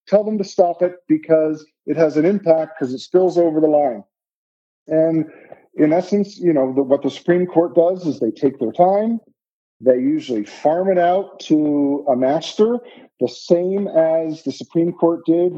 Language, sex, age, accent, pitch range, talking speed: English, male, 50-69, American, 155-190 Hz, 175 wpm